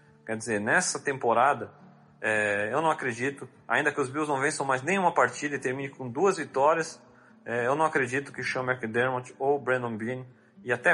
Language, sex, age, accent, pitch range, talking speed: Portuguese, male, 40-59, Brazilian, 120-150 Hz, 185 wpm